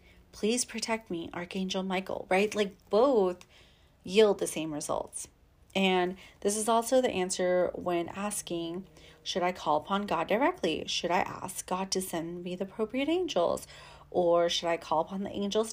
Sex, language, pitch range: female, English, 175-225 Hz